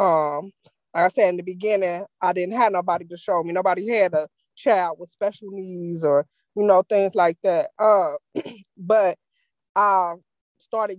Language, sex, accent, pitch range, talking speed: English, female, American, 180-230 Hz, 170 wpm